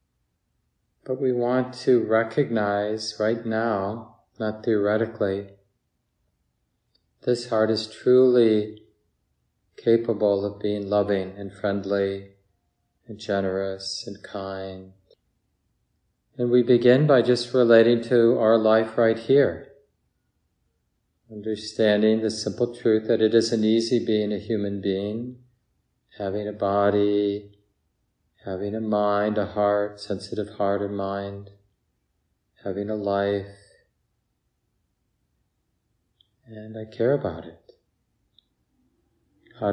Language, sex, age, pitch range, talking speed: English, male, 40-59, 100-115 Hz, 105 wpm